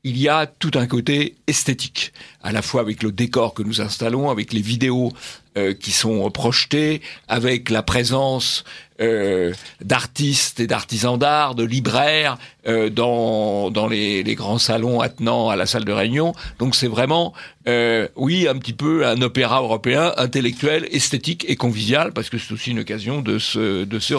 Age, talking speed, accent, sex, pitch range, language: 60-79, 175 wpm, French, male, 115-140 Hz, French